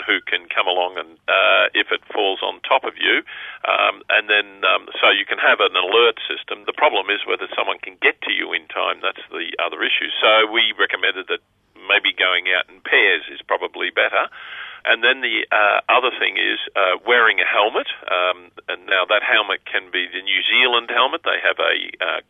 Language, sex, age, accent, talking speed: English, male, 50-69, Australian, 205 wpm